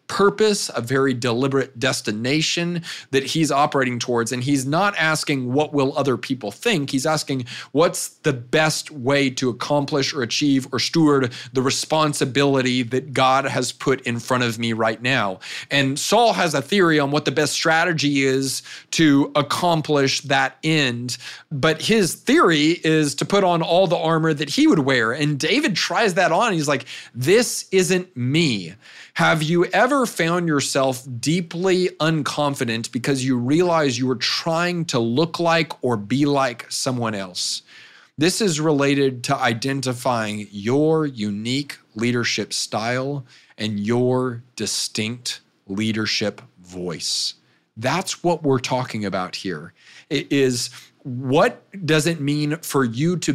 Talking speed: 150 wpm